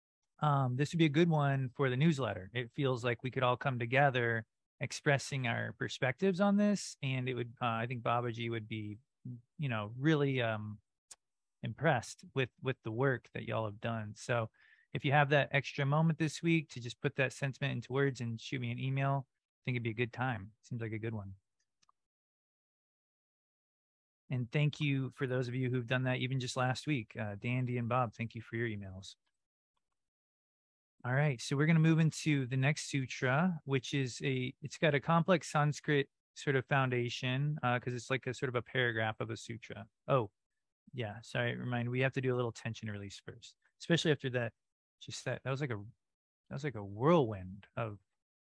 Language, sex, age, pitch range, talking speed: English, male, 30-49, 115-140 Hz, 200 wpm